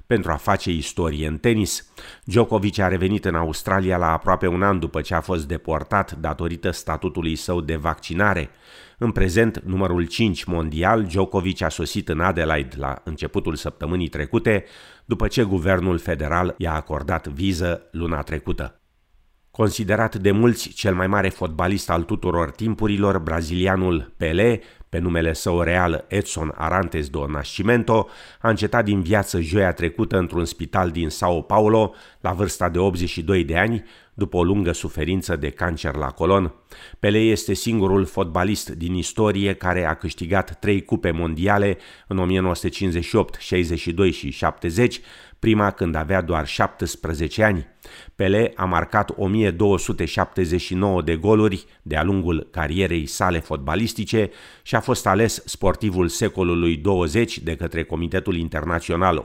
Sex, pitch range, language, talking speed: male, 80-100 Hz, Romanian, 140 wpm